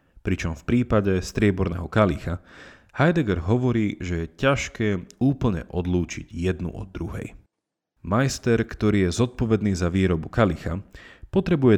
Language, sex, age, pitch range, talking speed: Slovak, male, 30-49, 85-115 Hz, 115 wpm